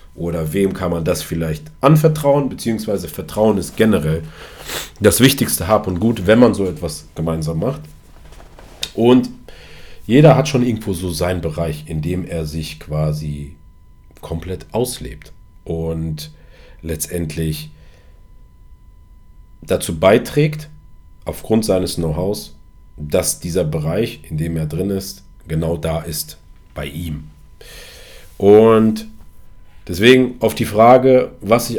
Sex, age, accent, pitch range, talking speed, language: male, 40-59, German, 80-115 Hz, 120 wpm, German